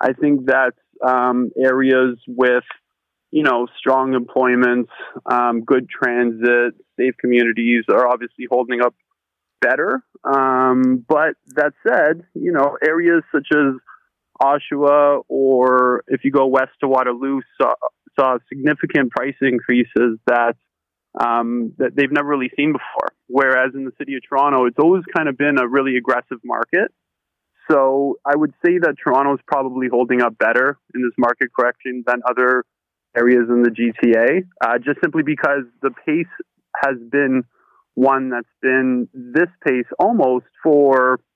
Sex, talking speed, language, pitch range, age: male, 145 wpm, English, 125-140 Hz, 20-39